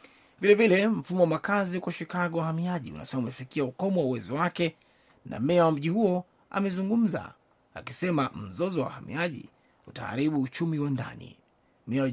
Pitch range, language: 130-165 Hz, Swahili